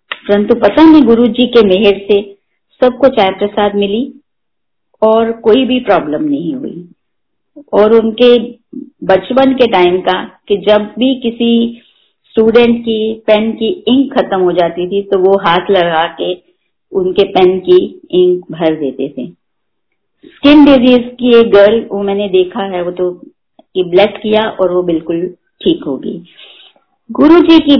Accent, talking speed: native, 145 wpm